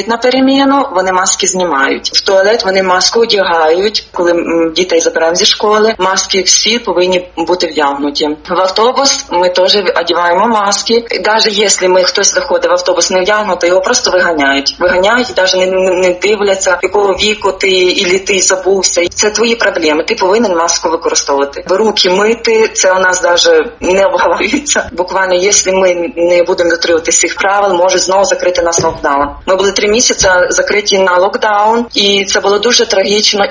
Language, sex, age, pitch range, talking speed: Ukrainian, female, 20-39, 180-210 Hz, 160 wpm